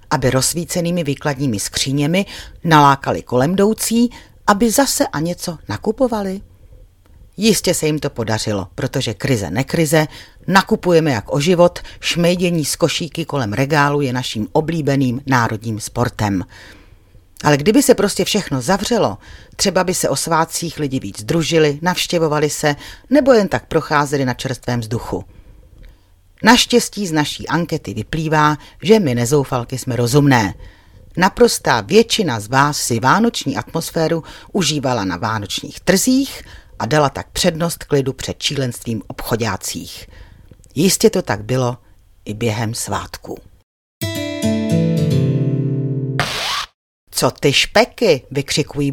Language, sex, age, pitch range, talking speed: Czech, female, 40-59, 115-170 Hz, 120 wpm